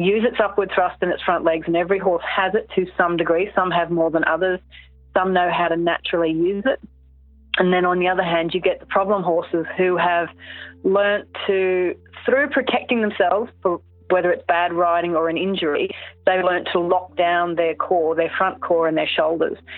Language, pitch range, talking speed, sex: English, 165-185 Hz, 200 wpm, female